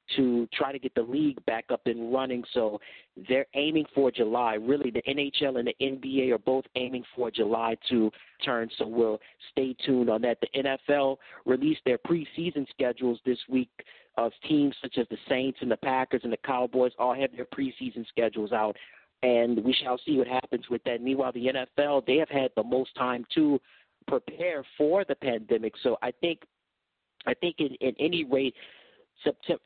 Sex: male